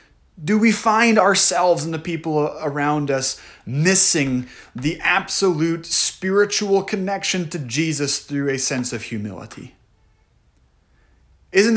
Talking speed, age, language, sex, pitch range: 110 wpm, 30-49, English, male, 125-180 Hz